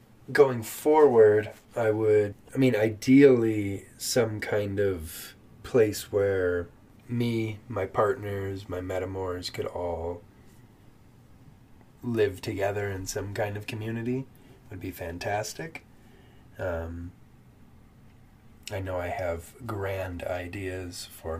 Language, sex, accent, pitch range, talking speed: English, male, American, 95-125 Hz, 105 wpm